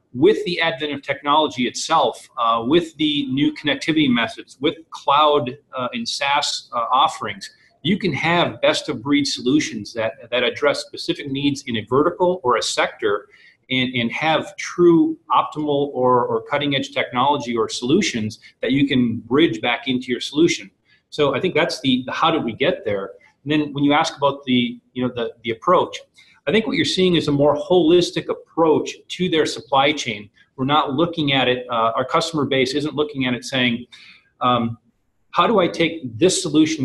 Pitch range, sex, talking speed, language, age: 125-170 Hz, male, 185 wpm, English, 40-59